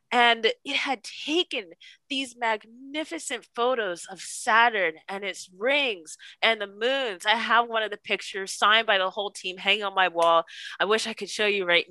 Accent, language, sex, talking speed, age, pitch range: American, English, female, 185 wpm, 20-39, 235-360 Hz